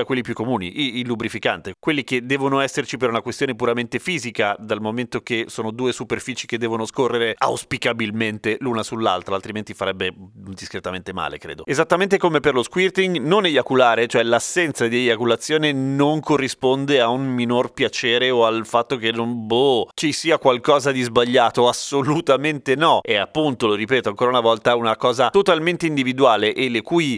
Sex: male